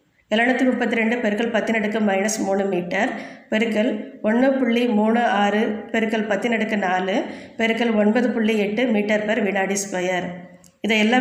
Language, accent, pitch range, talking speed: Tamil, native, 195-235 Hz, 90 wpm